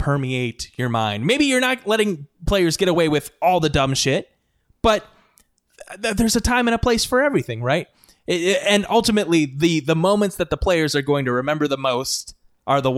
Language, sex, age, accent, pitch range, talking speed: English, male, 20-39, American, 130-170 Hz, 205 wpm